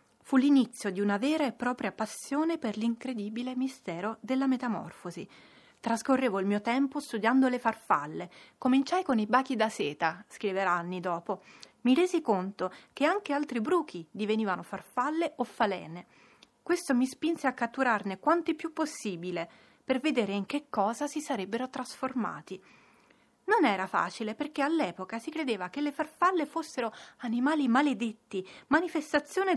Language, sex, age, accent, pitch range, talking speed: Italian, female, 30-49, native, 205-285 Hz, 140 wpm